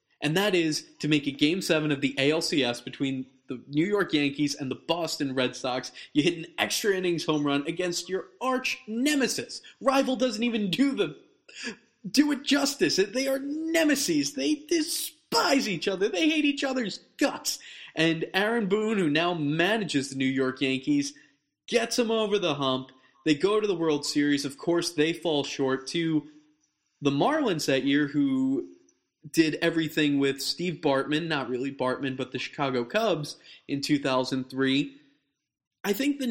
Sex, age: male, 20-39